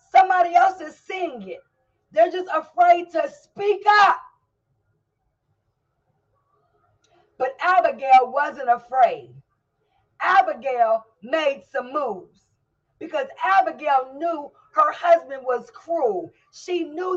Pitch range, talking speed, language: 215-320 Hz, 100 wpm, English